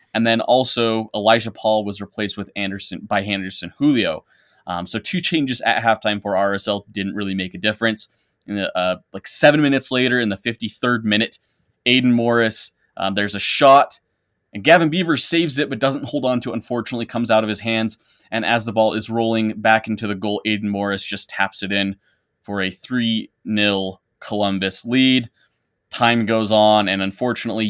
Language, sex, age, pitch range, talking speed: English, male, 20-39, 100-115 Hz, 185 wpm